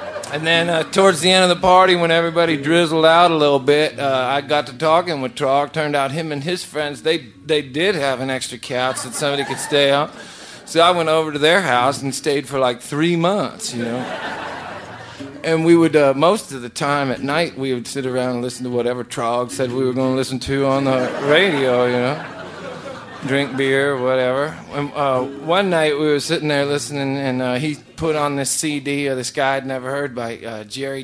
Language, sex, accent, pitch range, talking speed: English, male, American, 125-155 Hz, 220 wpm